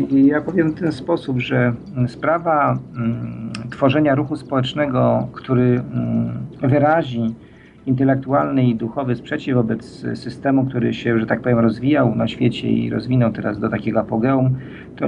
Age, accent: 50-69, native